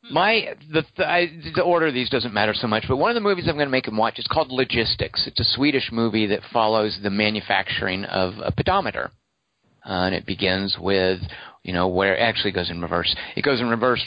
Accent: American